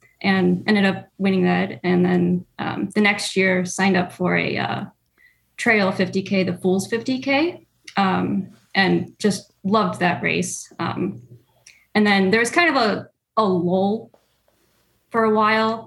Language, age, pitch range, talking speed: English, 10-29, 180-215 Hz, 150 wpm